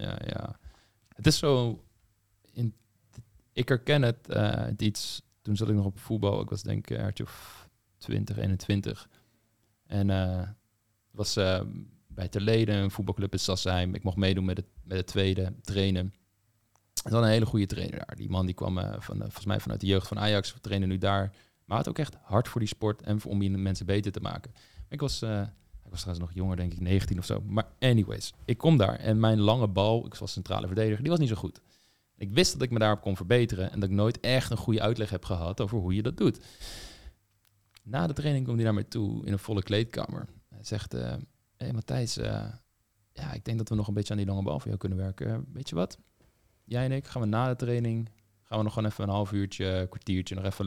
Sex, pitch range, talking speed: male, 95-115 Hz, 225 wpm